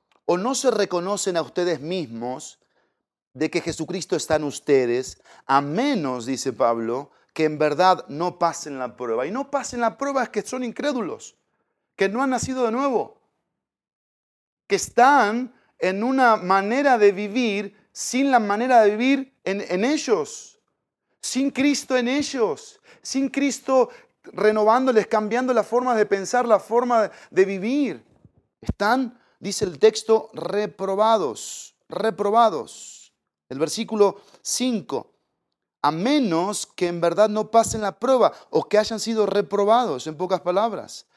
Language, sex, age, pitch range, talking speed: Spanish, male, 40-59, 180-245 Hz, 140 wpm